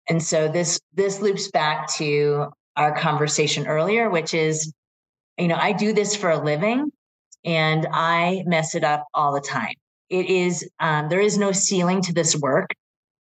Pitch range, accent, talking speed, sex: 155-175 Hz, American, 175 wpm, female